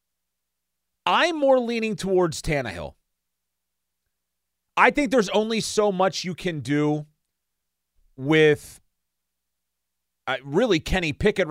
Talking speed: 100 wpm